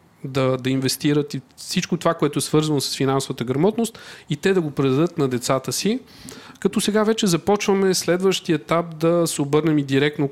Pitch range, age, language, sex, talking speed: 135-170 Hz, 40-59, Bulgarian, male, 180 wpm